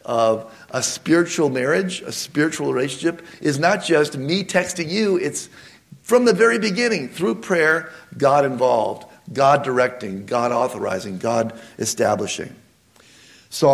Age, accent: 50-69, American